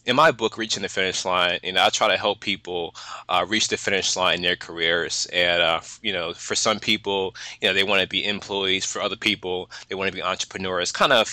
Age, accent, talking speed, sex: 20-39, American, 245 wpm, male